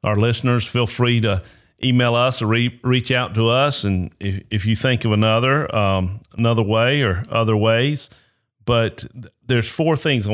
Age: 40-59